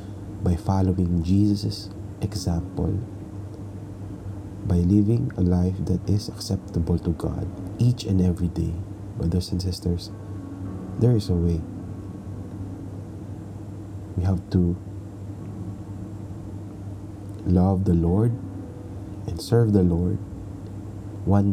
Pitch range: 95-100 Hz